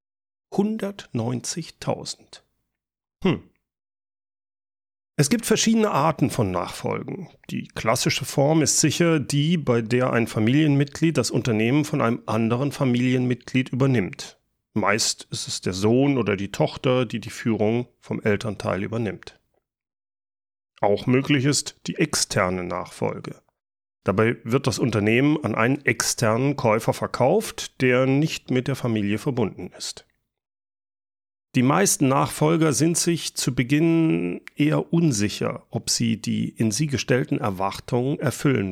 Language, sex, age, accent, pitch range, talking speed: German, male, 40-59, German, 105-145 Hz, 120 wpm